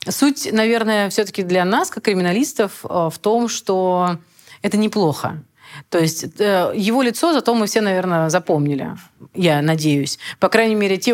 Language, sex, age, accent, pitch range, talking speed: Russian, female, 30-49, native, 165-210 Hz, 145 wpm